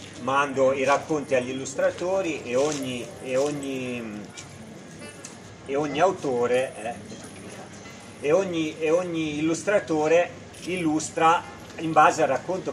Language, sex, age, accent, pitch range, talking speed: Italian, male, 40-59, native, 120-150 Hz, 110 wpm